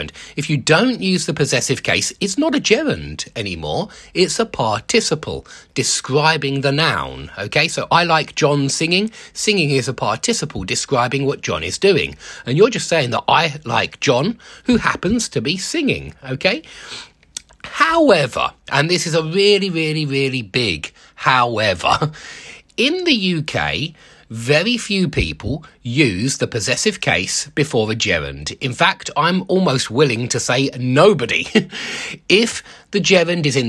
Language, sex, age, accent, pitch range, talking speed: English, male, 30-49, British, 130-190 Hz, 150 wpm